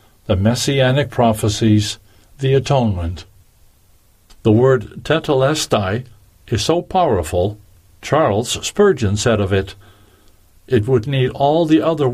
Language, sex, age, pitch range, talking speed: English, male, 60-79, 100-130 Hz, 110 wpm